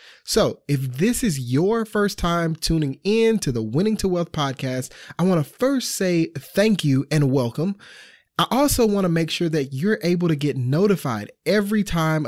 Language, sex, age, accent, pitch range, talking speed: English, male, 30-49, American, 135-185 Hz, 185 wpm